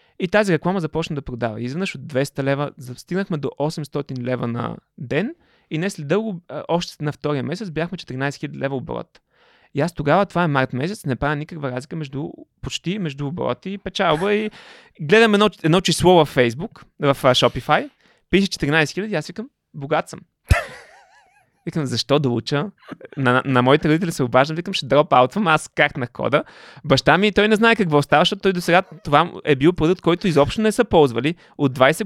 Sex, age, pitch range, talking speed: male, 20-39, 140-195 Hz, 190 wpm